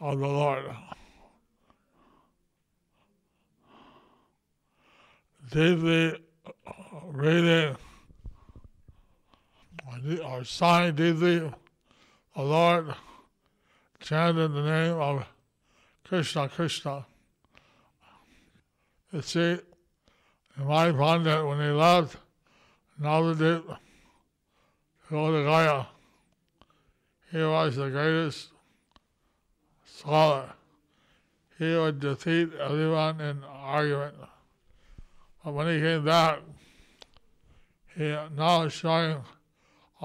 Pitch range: 140-165 Hz